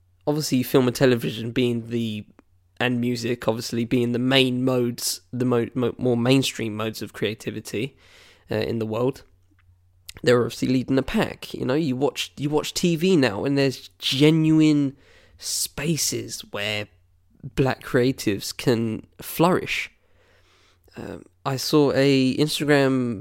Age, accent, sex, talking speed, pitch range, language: 10-29, British, male, 135 wpm, 115-135 Hz, English